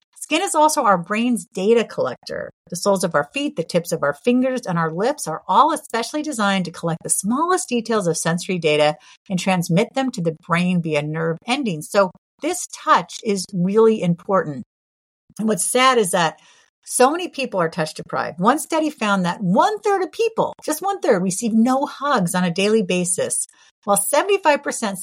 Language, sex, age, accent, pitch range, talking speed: English, female, 50-69, American, 175-240 Hz, 185 wpm